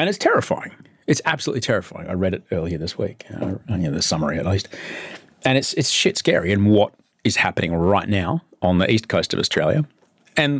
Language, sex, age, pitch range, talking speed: English, male, 30-49, 95-125 Hz, 200 wpm